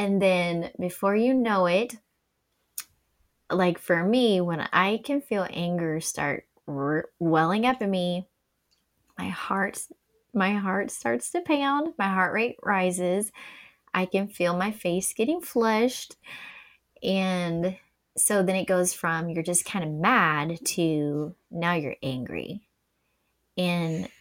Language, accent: English, American